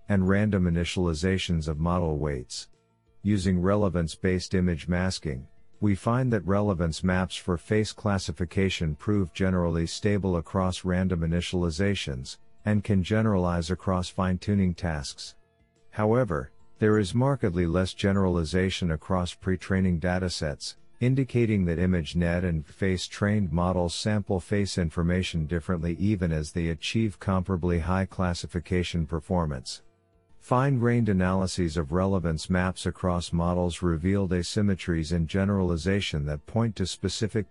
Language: English